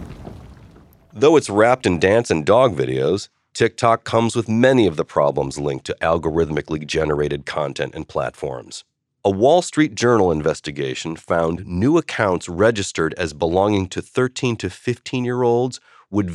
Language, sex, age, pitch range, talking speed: English, male, 40-59, 80-120 Hz, 140 wpm